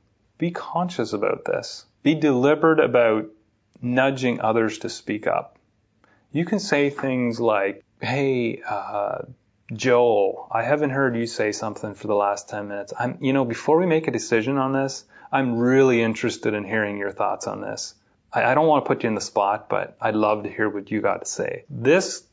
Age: 30-49